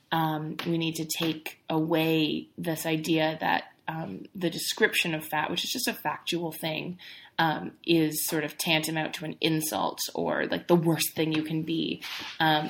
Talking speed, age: 175 wpm, 20-39